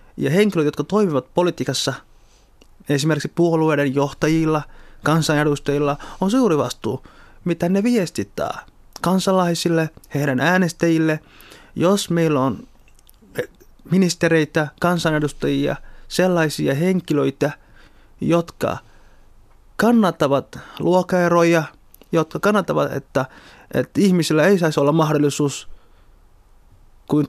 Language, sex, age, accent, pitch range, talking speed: Finnish, male, 20-39, native, 140-180 Hz, 85 wpm